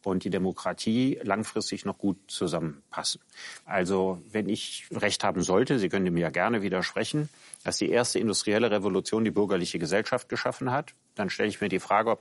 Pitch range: 95-110 Hz